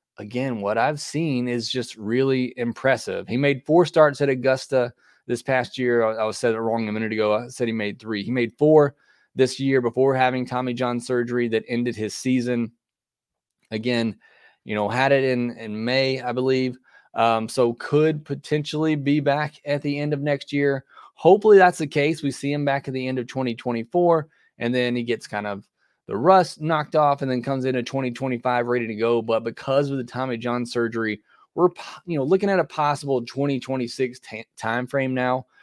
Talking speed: 195 wpm